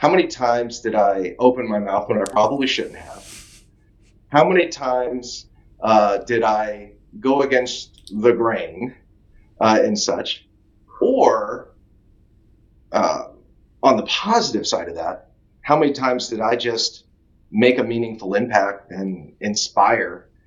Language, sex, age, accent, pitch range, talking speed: English, male, 30-49, American, 100-130 Hz, 135 wpm